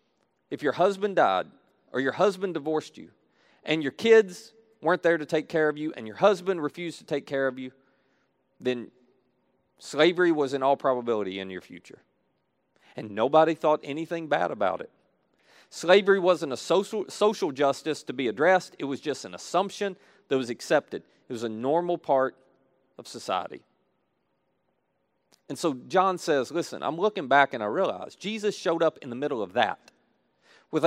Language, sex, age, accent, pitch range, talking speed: English, male, 40-59, American, 135-185 Hz, 170 wpm